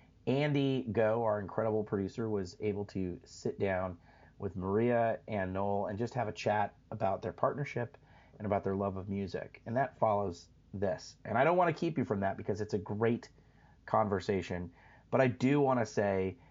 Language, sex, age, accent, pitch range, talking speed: English, male, 30-49, American, 95-115 Hz, 190 wpm